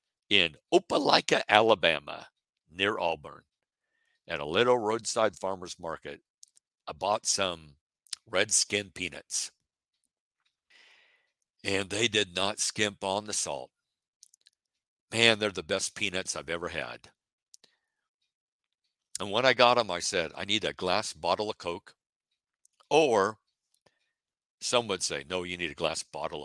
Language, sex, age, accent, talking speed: English, male, 50-69, American, 130 wpm